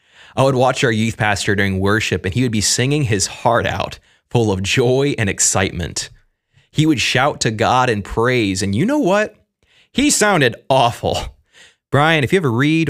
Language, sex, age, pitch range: English, male, 20-39, 105-145 Hz